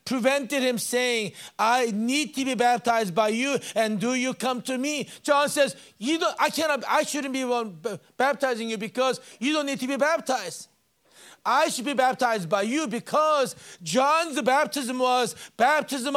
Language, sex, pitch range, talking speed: English, male, 210-265 Hz, 165 wpm